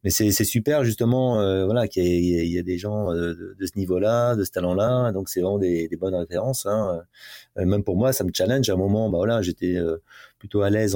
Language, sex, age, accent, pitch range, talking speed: French, male, 30-49, French, 95-115 Hz, 250 wpm